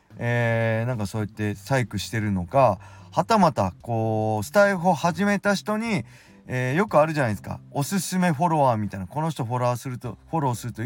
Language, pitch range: Japanese, 105-150 Hz